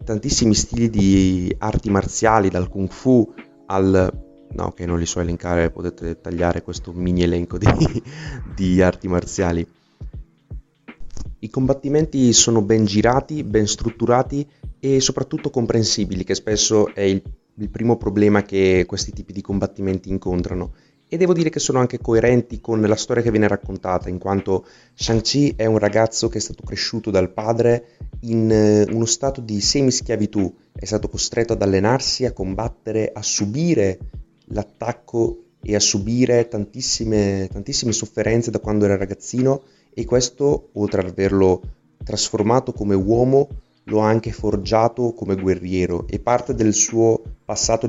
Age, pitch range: 30-49, 95-120 Hz